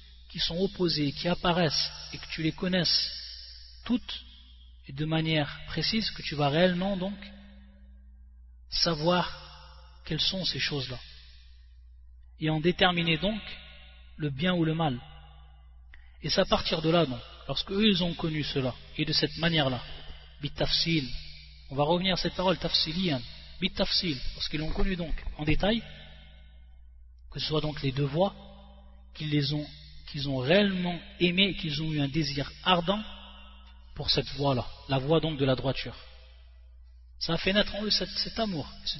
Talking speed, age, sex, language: 165 wpm, 30-49, male, French